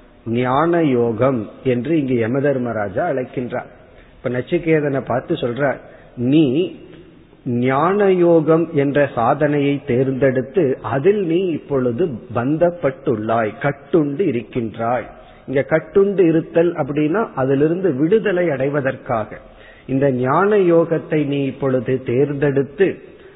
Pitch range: 125-155 Hz